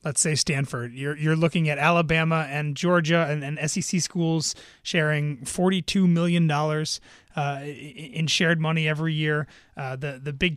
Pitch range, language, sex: 150-175 Hz, English, male